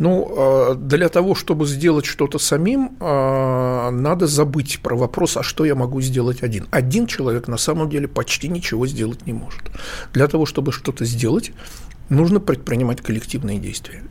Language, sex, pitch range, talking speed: Russian, male, 125-155 Hz, 155 wpm